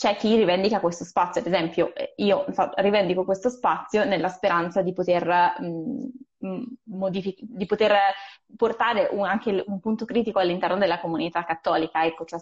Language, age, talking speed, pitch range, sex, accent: Italian, 20-39, 130 wpm, 175-215 Hz, female, native